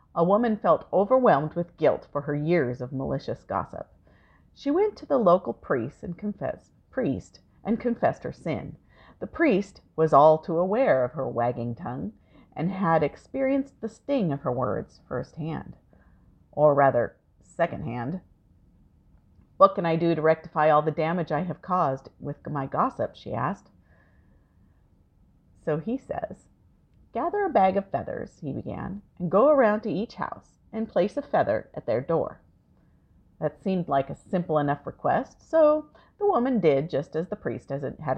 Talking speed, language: 165 wpm, English